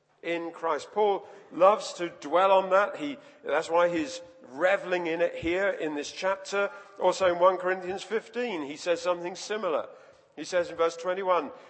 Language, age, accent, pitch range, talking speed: English, 50-69, British, 170-255 Hz, 170 wpm